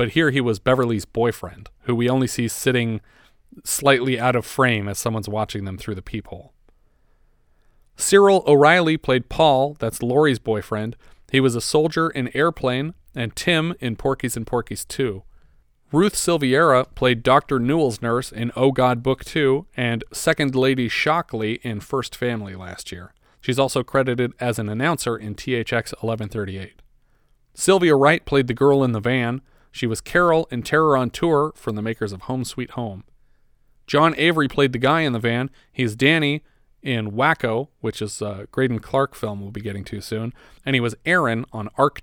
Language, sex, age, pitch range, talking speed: English, male, 40-59, 110-140 Hz, 175 wpm